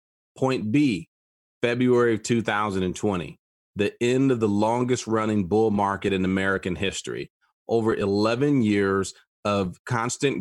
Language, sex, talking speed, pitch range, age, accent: English, male, 115 wpm, 95-125 Hz, 30-49, American